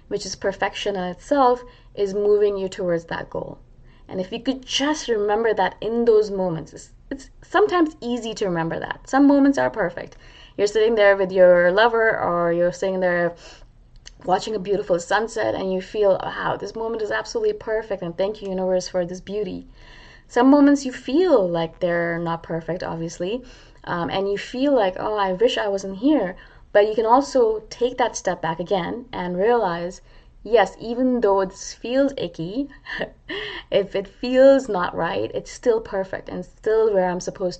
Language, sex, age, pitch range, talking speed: English, female, 20-39, 175-225 Hz, 180 wpm